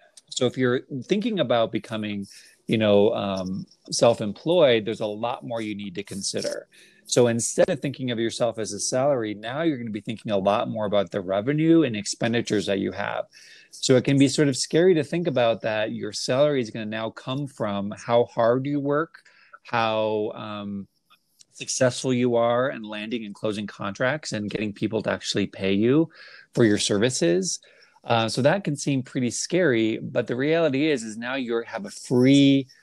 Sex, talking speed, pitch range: male, 185 wpm, 105-130 Hz